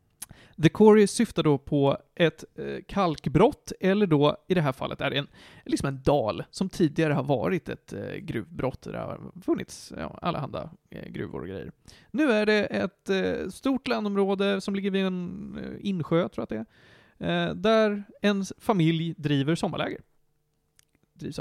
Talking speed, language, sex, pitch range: 165 wpm, Swedish, male, 155-220 Hz